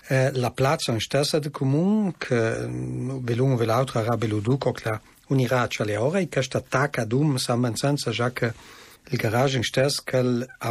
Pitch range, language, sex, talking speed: 115-135 Hz, Italian, male, 100 wpm